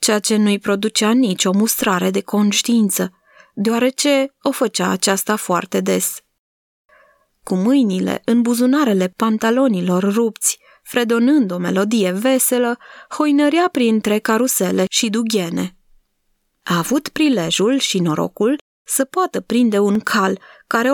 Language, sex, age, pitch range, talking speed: Romanian, female, 20-39, 190-245 Hz, 115 wpm